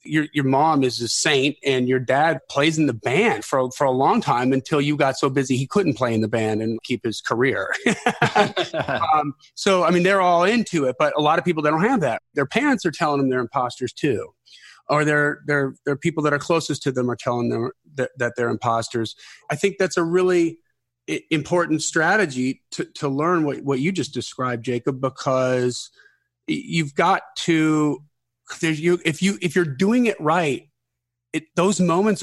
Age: 40-59